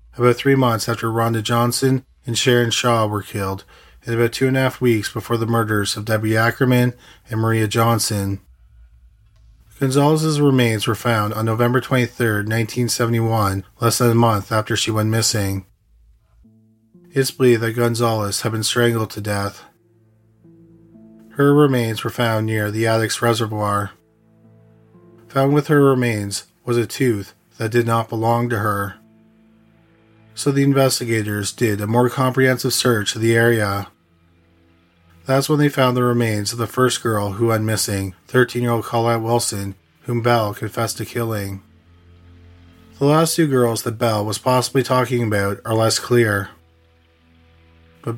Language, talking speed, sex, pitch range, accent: English, 150 wpm, male, 105-120 Hz, American